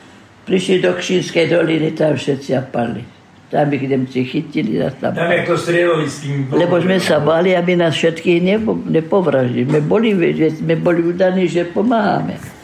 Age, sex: 60-79, female